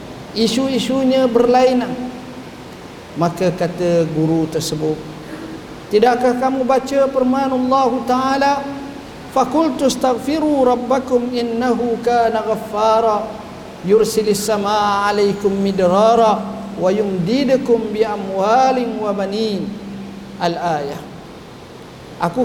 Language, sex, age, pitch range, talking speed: Malay, male, 50-69, 190-245 Hz, 75 wpm